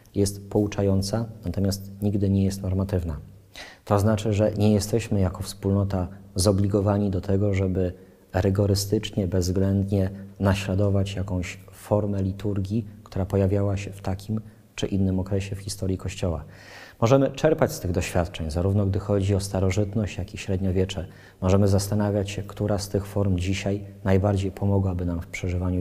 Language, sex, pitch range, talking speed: Polish, male, 95-105 Hz, 140 wpm